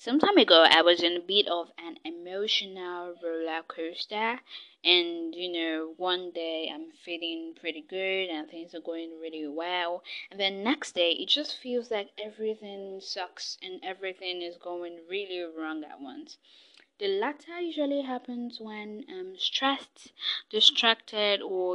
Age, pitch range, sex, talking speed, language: 10-29, 175-265 Hz, female, 150 wpm, English